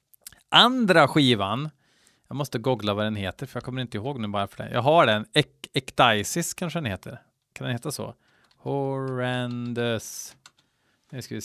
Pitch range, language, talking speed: 115-155 Hz, Swedish, 175 wpm